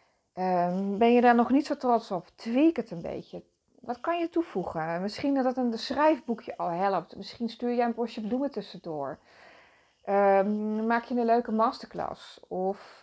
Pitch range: 195-260 Hz